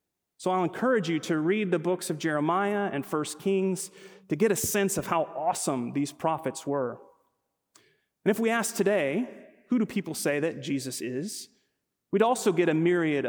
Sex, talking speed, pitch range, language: male, 180 wpm, 150-200 Hz, English